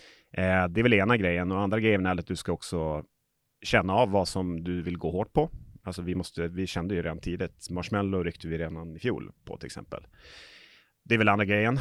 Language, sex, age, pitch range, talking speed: Swedish, male, 30-49, 85-100 Hz, 225 wpm